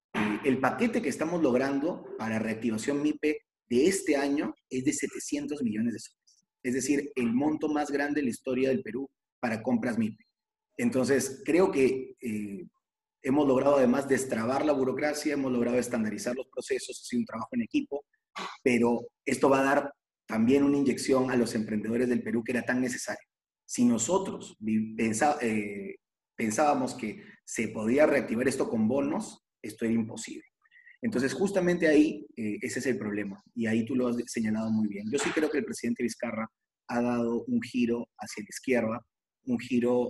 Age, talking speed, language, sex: 30-49, 175 wpm, Spanish, male